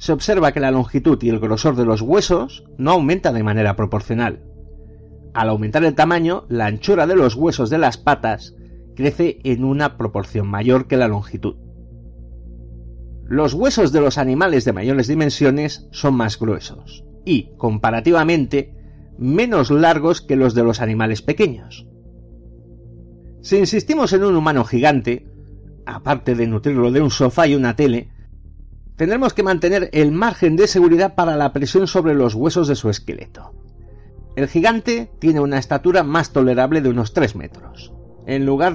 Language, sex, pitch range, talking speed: Spanish, male, 110-165 Hz, 155 wpm